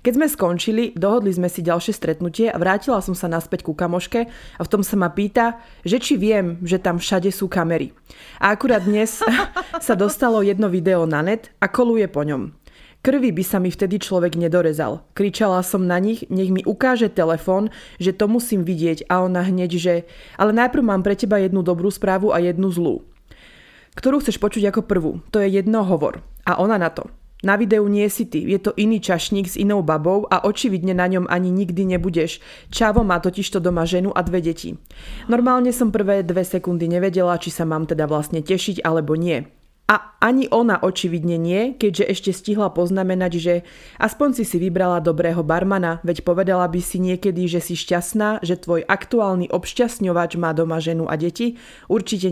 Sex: female